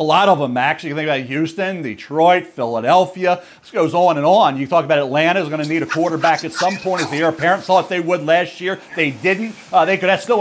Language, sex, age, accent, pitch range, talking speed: English, male, 50-69, American, 165-220 Hz, 255 wpm